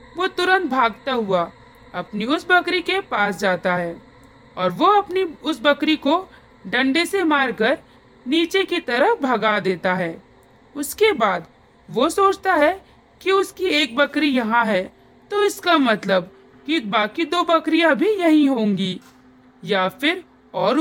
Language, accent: Hindi, native